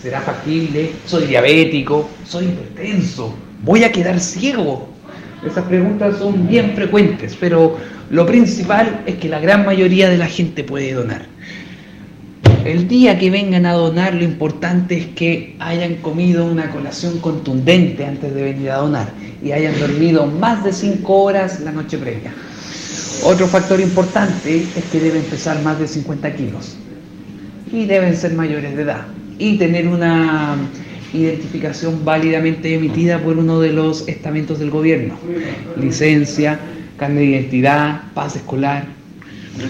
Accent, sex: Mexican, male